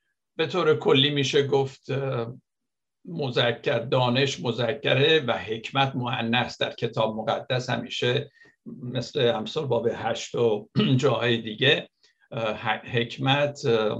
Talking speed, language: 100 wpm, Persian